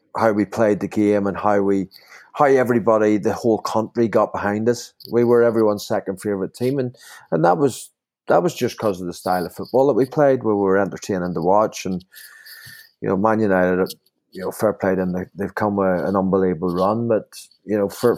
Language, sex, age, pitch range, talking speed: English, male, 30-49, 90-105 Hz, 210 wpm